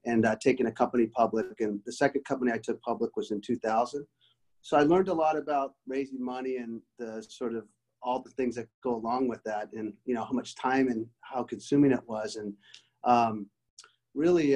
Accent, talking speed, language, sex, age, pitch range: American, 205 wpm, English, male, 30-49, 115-135 Hz